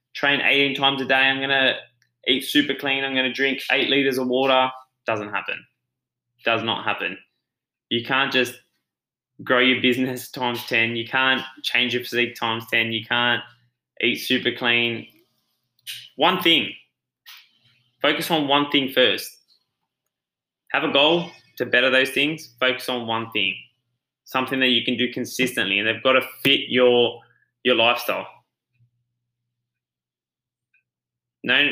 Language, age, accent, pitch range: English, 10-29, Australian, 120-130 Hz